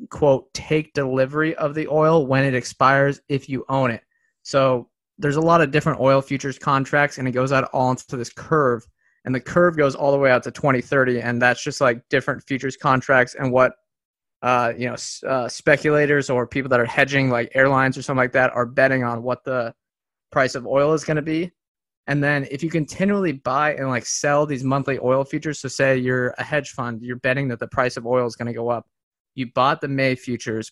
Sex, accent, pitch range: male, American, 125-150 Hz